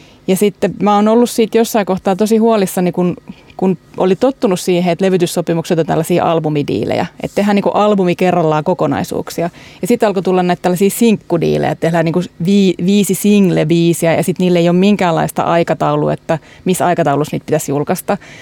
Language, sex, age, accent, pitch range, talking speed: Finnish, female, 30-49, native, 170-205 Hz, 175 wpm